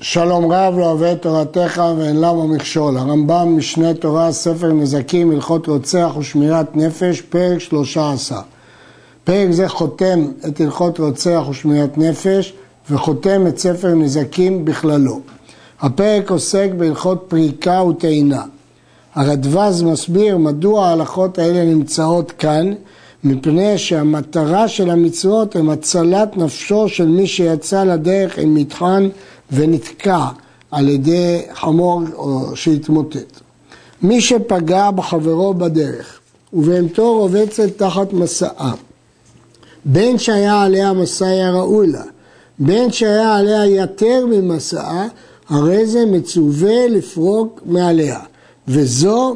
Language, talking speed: Hebrew, 105 wpm